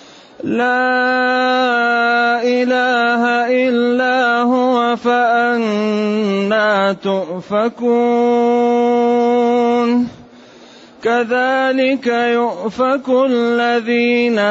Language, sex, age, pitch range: Arabic, male, 30-49, 200-240 Hz